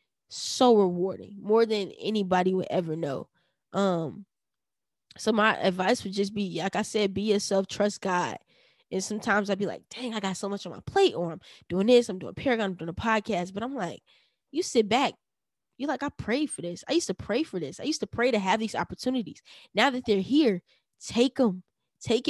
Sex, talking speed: female, 215 wpm